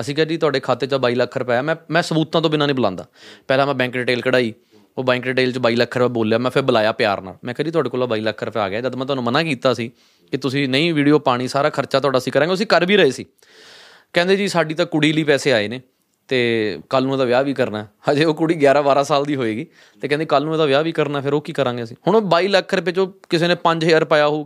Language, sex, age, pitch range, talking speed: Punjabi, male, 20-39, 130-170 Hz, 255 wpm